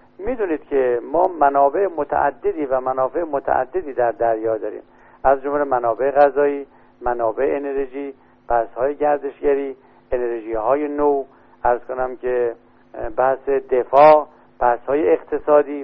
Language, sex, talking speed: Persian, male, 115 wpm